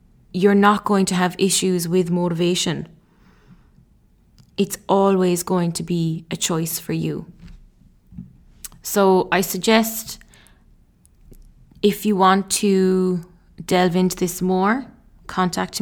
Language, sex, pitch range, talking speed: English, female, 175-190 Hz, 110 wpm